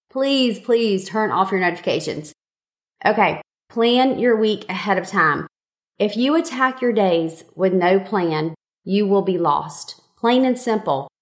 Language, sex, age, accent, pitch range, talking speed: English, female, 30-49, American, 190-235 Hz, 150 wpm